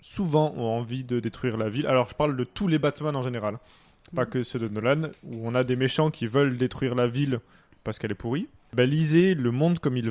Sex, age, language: male, 20-39, French